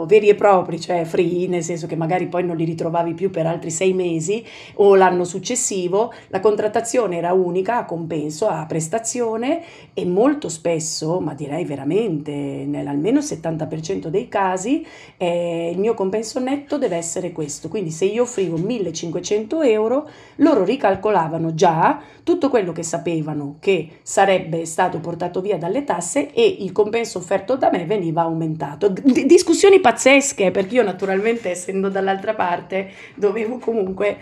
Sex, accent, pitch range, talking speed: female, native, 175-230 Hz, 155 wpm